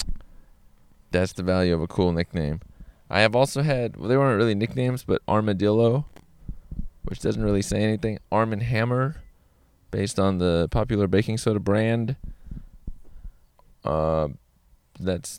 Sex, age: male, 20-39